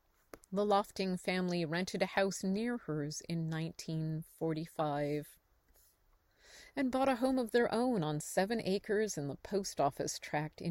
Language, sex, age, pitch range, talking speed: English, female, 30-49, 160-200 Hz, 145 wpm